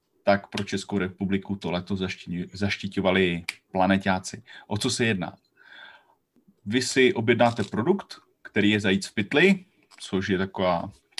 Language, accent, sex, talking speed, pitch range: Czech, native, male, 130 wpm, 100-120 Hz